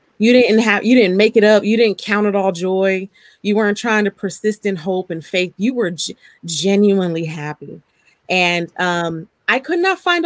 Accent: American